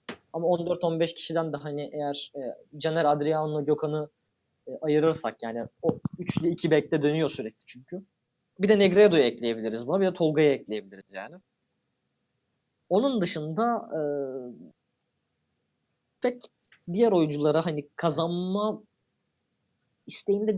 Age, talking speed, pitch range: 20-39, 115 wpm, 140-195 Hz